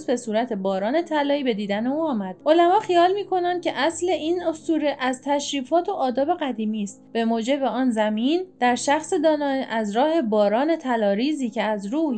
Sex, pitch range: female, 220-295 Hz